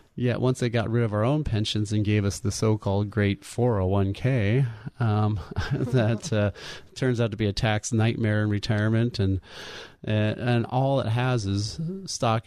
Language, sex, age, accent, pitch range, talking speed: English, male, 30-49, American, 100-125 Hz, 175 wpm